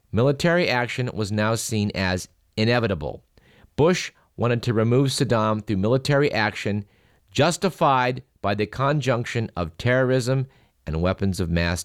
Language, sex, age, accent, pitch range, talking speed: English, male, 50-69, American, 95-120 Hz, 125 wpm